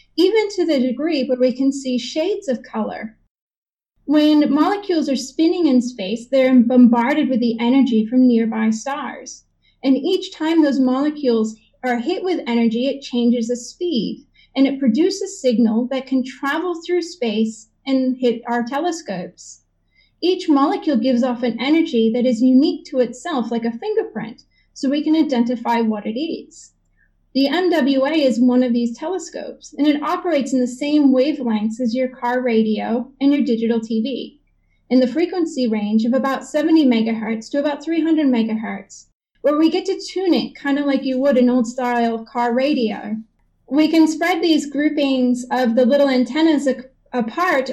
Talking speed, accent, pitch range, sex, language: 165 wpm, American, 240-305 Hz, female, English